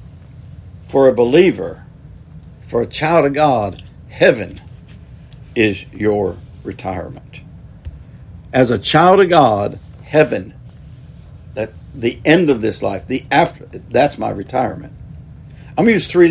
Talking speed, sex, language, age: 120 wpm, male, English, 60-79